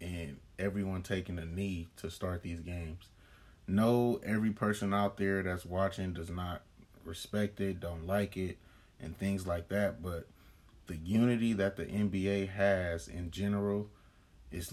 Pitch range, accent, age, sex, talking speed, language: 90-100 Hz, American, 30-49, male, 150 wpm, English